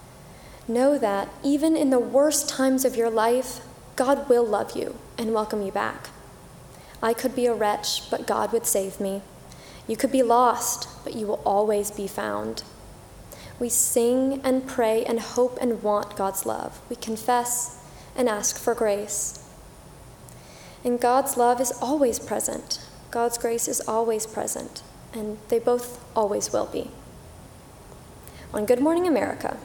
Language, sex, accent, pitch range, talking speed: English, female, American, 210-260 Hz, 150 wpm